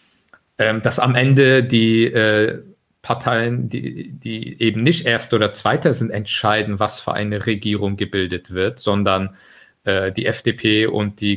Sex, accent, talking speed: male, German, 145 wpm